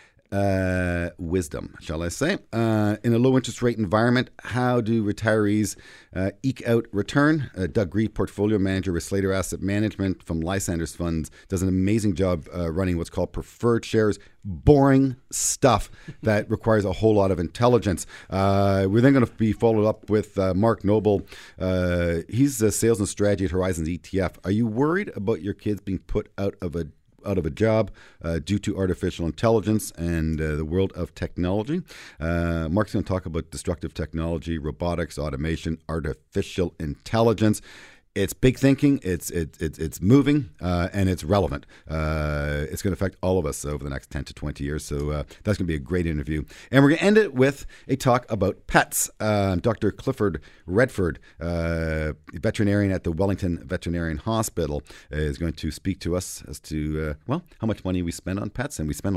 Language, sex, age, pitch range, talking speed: English, male, 40-59, 80-105 Hz, 190 wpm